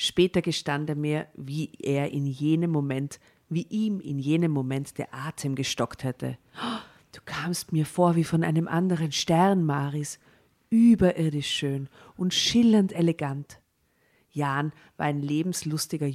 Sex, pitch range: female, 140-165 Hz